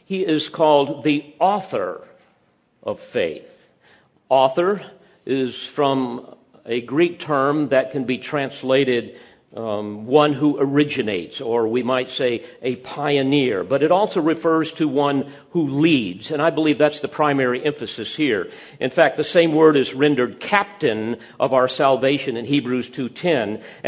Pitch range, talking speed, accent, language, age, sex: 130-165 Hz, 145 wpm, American, English, 50-69, male